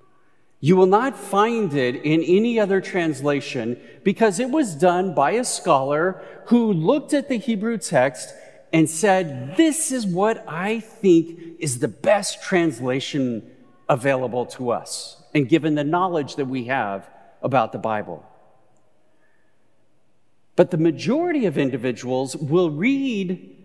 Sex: male